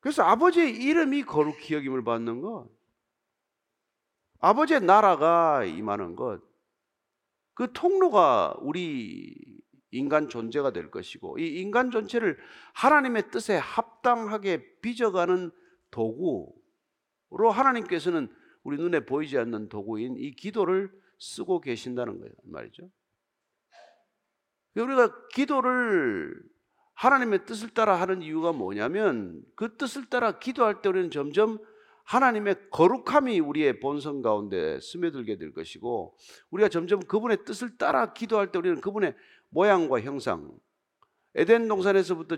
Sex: male